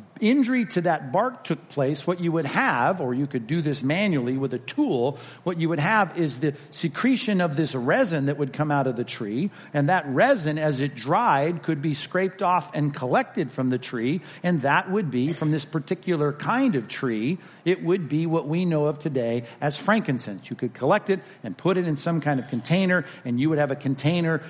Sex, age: male, 50-69